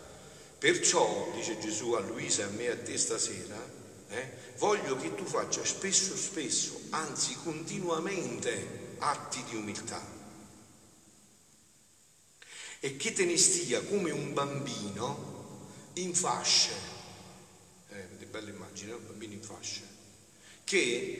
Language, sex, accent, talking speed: Italian, male, native, 120 wpm